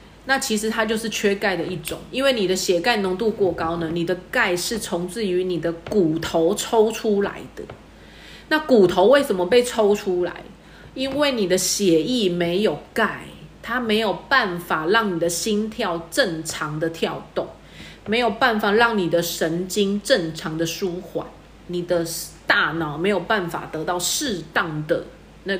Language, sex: Chinese, female